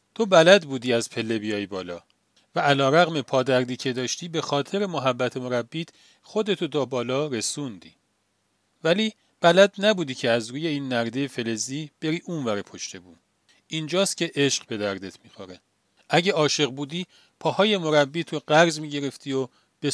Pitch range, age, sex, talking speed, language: 120-175 Hz, 40-59, male, 145 wpm, Persian